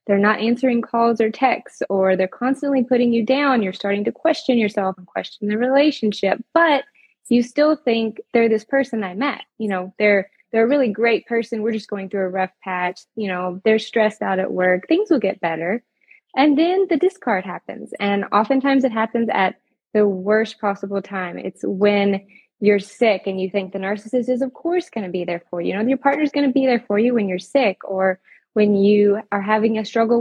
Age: 20-39